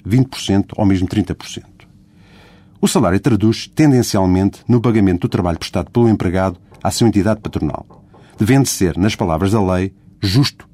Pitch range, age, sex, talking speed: 95-125 Hz, 50-69, male, 140 wpm